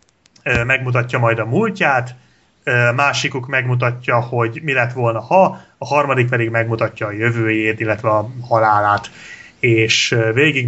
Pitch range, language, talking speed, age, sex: 125-175 Hz, Hungarian, 125 wpm, 30-49, male